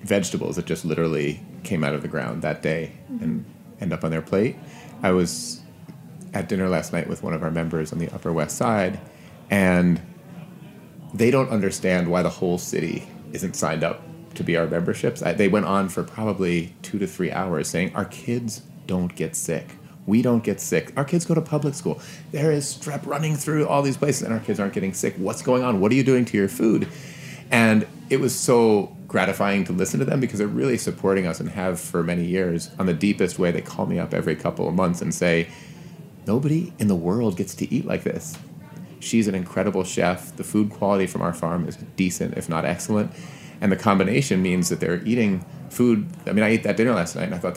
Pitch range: 90-135 Hz